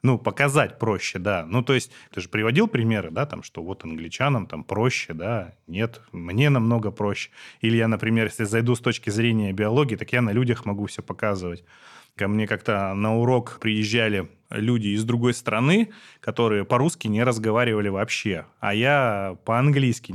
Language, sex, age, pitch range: Russian, male, 20-39, 100-125 Hz